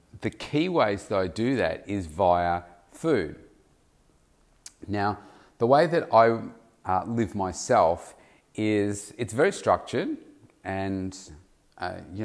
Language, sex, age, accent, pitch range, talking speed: English, male, 30-49, Australian, 95-115 Hz, 125 wpm